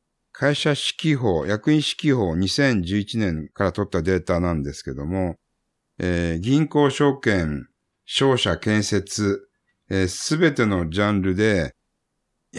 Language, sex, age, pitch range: Japanese, male, 60-79, 90-140 Hz